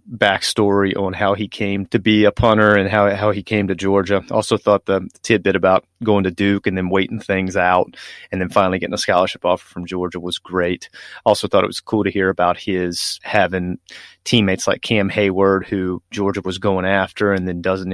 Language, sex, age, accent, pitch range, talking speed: English, male, 30-49, American, 95-105 Hz, 205 wpm